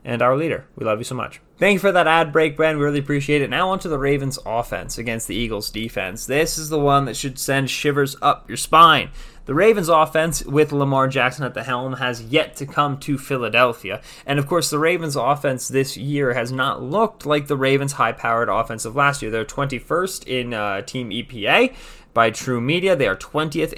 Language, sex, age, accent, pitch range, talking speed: English, male, 20-39, American, 120-150 Hz, 215 wpm